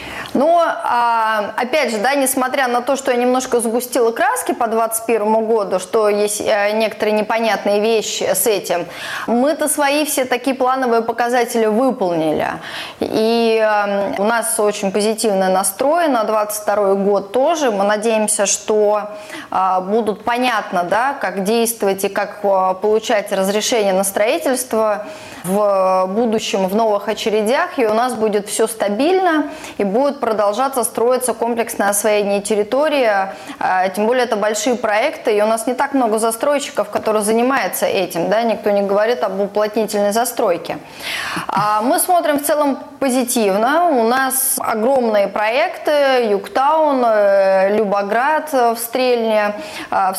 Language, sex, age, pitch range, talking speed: Russian, female, 20-39, 205-255 Hz, 125 wpm